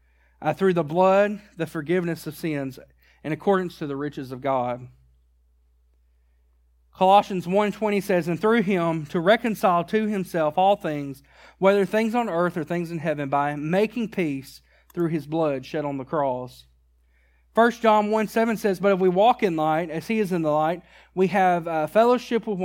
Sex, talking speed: male, 170 wpm